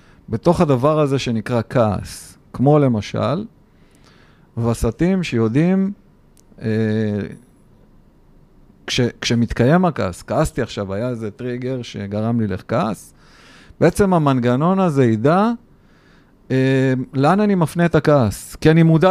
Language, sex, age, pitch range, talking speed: Hebrew, male, 50-69, 120-160 Hz, 105 wpm